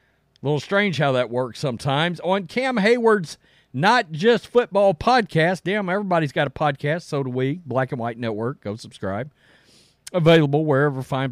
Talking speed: 165 wpm